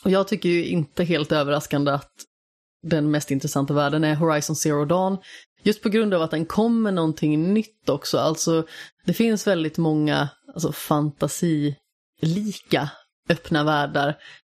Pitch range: 150-175 Hz